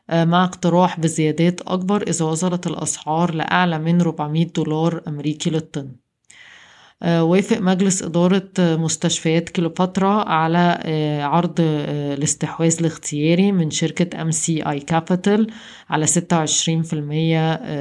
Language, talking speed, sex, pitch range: Arabic, 110 wpm, female, 155-175 Hz